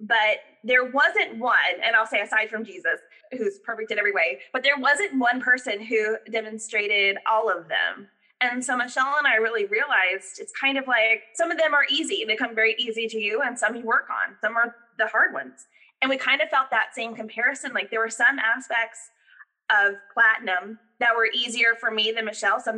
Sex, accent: female, American